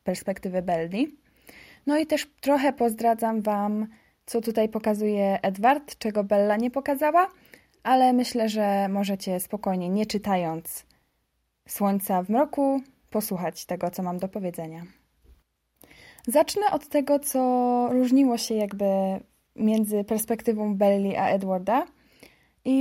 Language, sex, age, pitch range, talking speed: Polish, female, 20-39, 205-250 Hz, 120 wpm